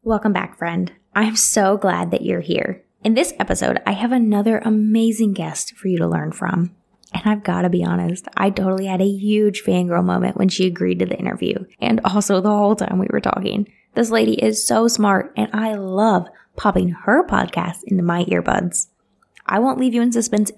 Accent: American